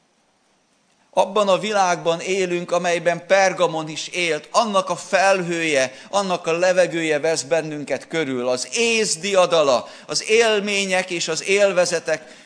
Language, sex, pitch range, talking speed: Hungarian, male, 145-195 Hz, 115 wpm